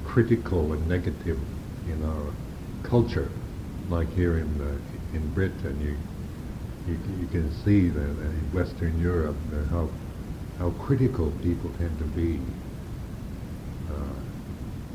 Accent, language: American, English